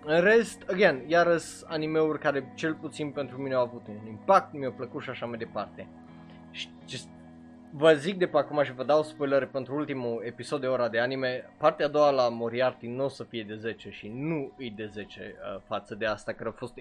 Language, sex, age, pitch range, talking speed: Romanian, male, 20-39, 110-155 Hz, 205 wpm